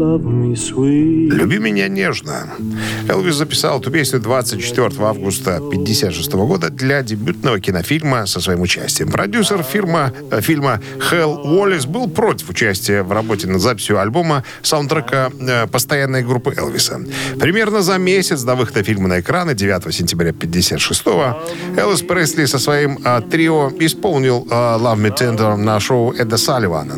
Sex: male